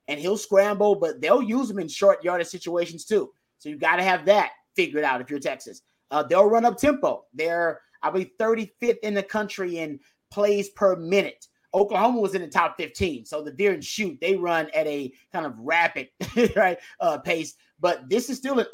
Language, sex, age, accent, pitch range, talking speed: English, male, 30-49, American, 170-205 Hz, 205 wpm